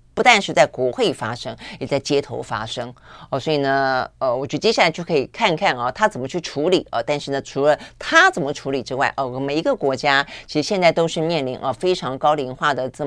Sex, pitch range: female, 135-185 Hz